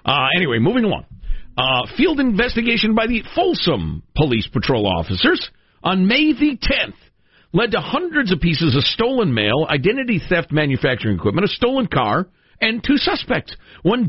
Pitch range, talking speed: 125-205 Hz, 155 wpm